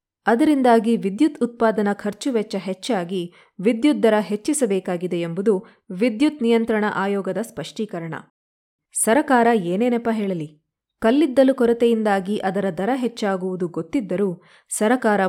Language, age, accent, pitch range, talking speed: Kannada, 20-39, native, 190-245 Hz, 90 wpm